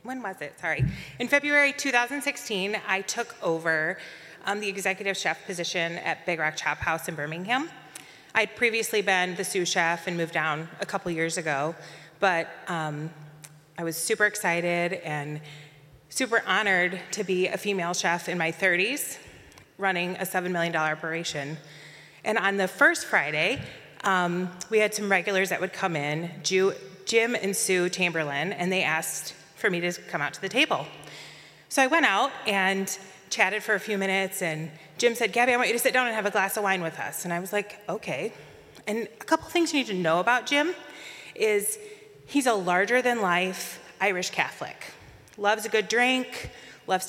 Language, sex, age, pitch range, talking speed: English, female, 30-49, 170-235 Hz, 180 wpm